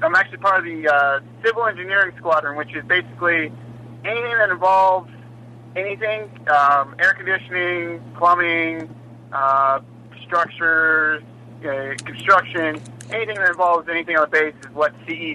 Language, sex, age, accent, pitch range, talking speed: English, male, 30-49, American, 120-170 Hz, 135 wpm